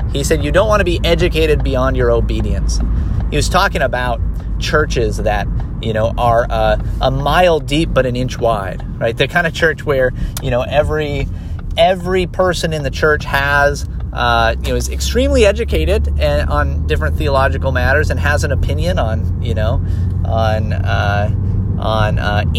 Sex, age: male, 30-49